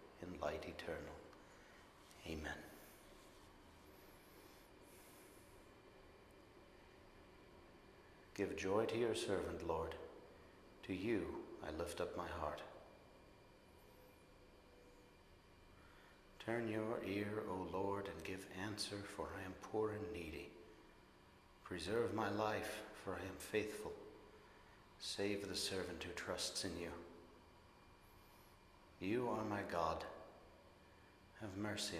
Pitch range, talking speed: 85-105 Hz, 95 wpm